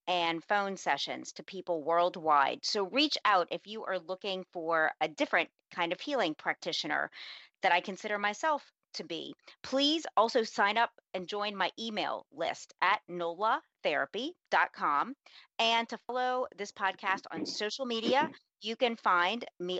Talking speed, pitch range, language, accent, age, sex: 150 wpm, 180-235 Hz, English, American, 40-59, female